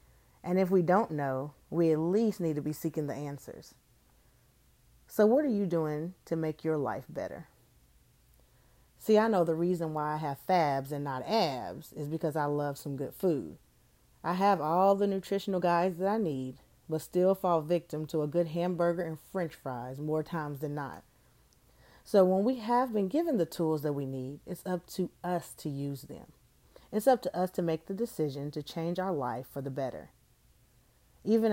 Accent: American